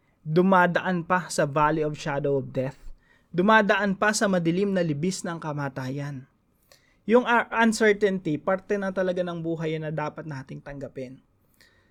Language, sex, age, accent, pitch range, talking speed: English, male, 20-39, Filipino, 140-185 Hz, 135 wpm